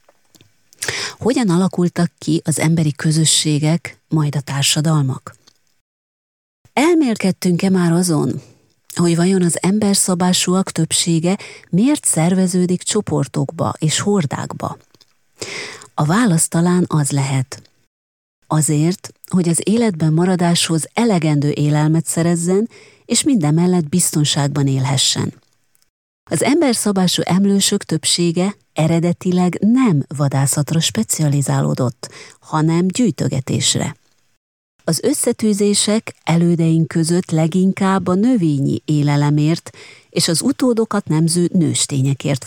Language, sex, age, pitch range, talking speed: Hungarian, female, 30-49, 145-185 Hz, 90 wpm